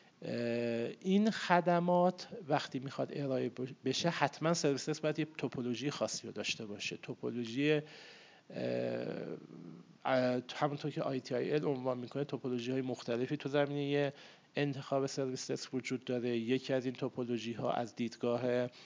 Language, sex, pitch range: Persian, male, 120-140 Hz